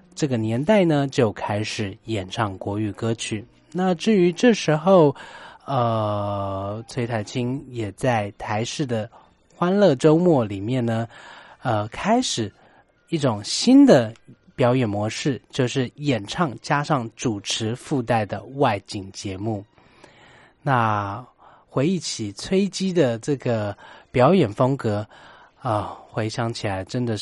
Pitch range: 105-145 Hz